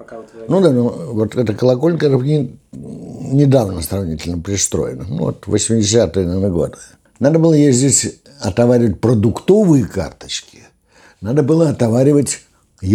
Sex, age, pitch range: male, 60-79, 95-130 Hz